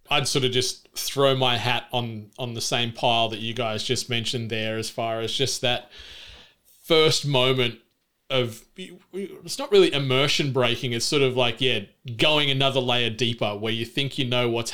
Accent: Australian